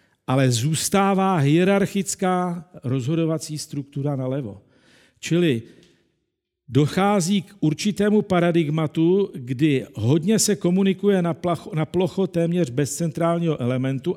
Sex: male